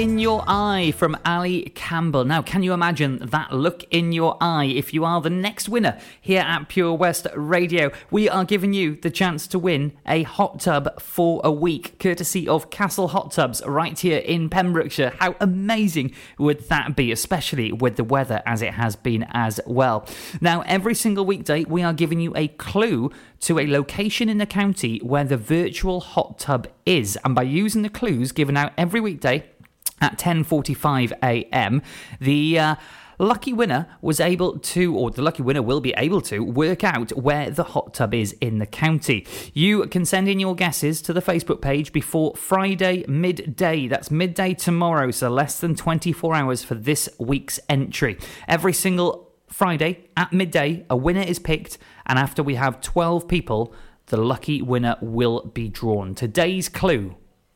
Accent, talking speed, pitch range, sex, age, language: British, 180 wpm, 135-180 Hz, male, 30-49, English